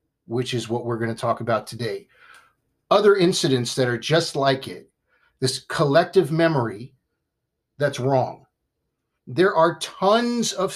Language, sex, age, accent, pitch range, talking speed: English, male, 50-69, American, 135-180 Hz, 140 wpm